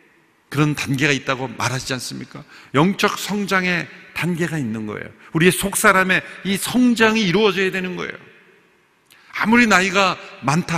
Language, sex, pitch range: Korean, male, 135-195 Hz